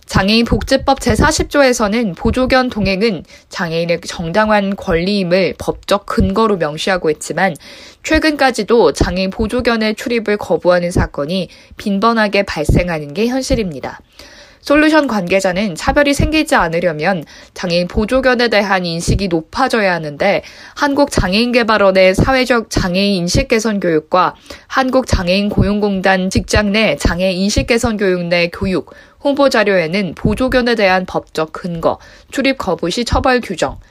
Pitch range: 180-245 Hz